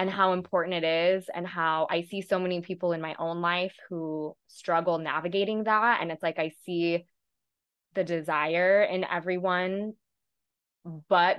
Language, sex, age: English, female, 20-39